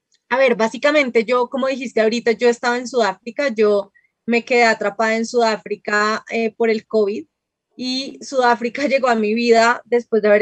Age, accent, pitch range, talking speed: 20-39, Colombian, 220-265 Hz, 175 wpm